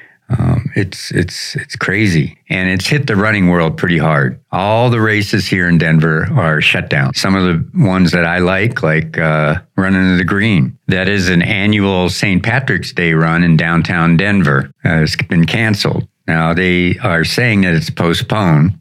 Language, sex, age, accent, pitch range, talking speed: English, male, 50-69, American, 80-105 Hz, 180 wpm